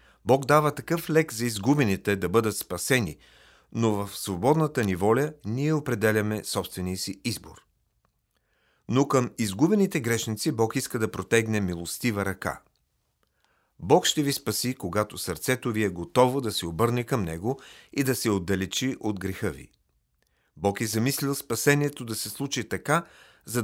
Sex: male